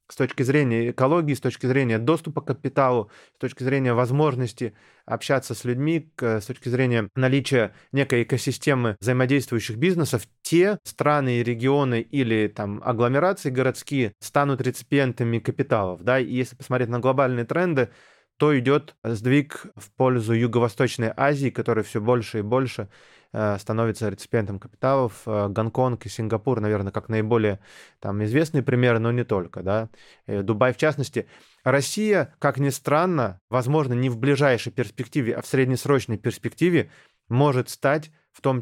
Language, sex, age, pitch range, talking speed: Russian, male, 20-39, 115-140 Hz, 140 wpm